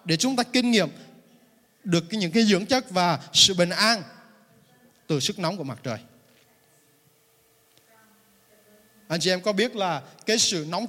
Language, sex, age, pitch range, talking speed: Vietnamese, male, 20-39, 150-210 Hz, 160 wpm